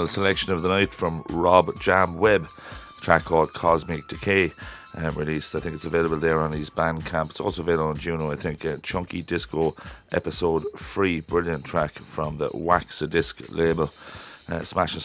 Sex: male